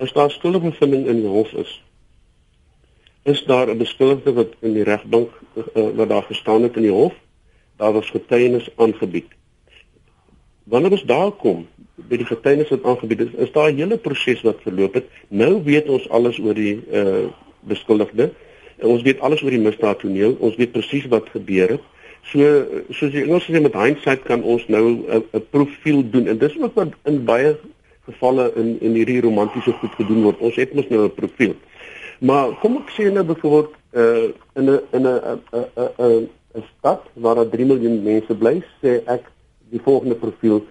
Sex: male